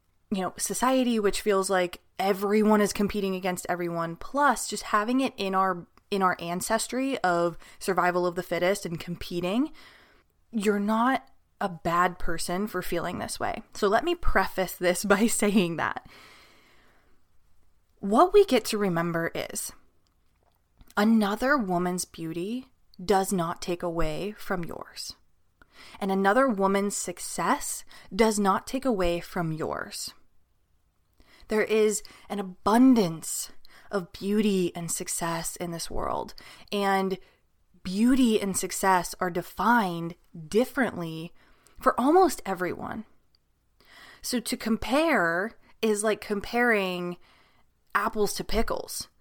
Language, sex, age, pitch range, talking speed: English, female, 20-39, 175-220 Hz, 120 wpm